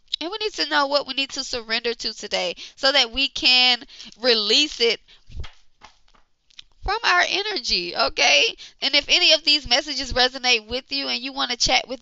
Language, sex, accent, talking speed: English, female, American, 185 wpm